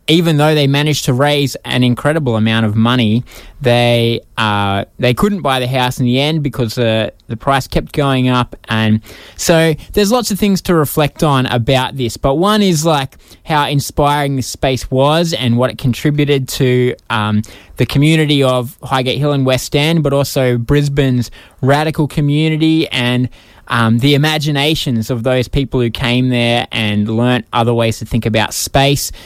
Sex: male